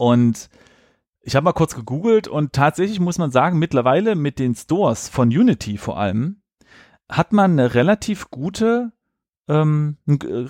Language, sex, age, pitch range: German, male, 30-49, 120-180 Hz